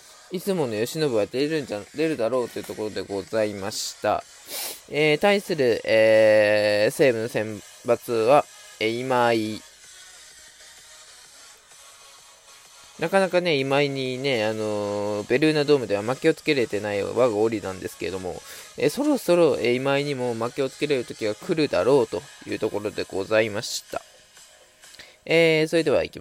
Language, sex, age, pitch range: Japanese, male, 20-39, 110-155 Hz